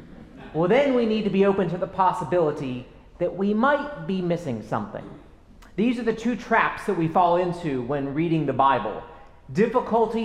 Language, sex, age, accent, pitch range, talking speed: English, male, 30-49, American, 160-210 Hz, 175 wpm